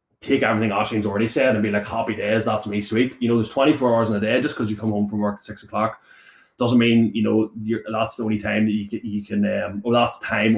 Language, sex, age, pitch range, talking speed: English, male, 20-39, 105-115 Hz, 285 wpm